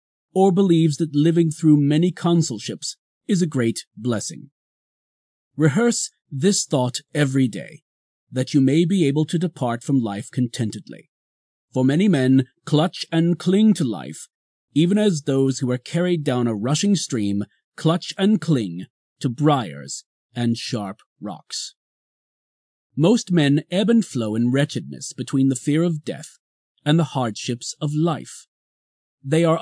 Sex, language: male, English